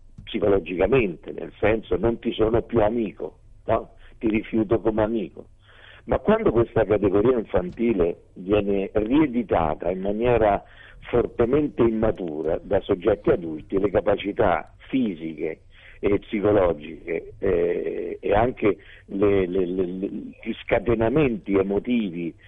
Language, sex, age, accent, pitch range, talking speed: Italian, male, 50-69, native, 95-120 Hz, 100 wpm